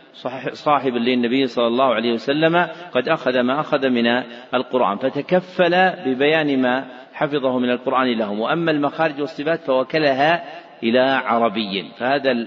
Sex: male